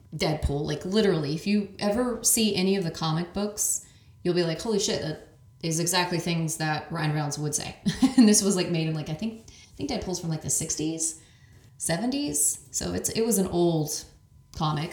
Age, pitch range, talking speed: 30-49, 150-205 Hz, 200 wpm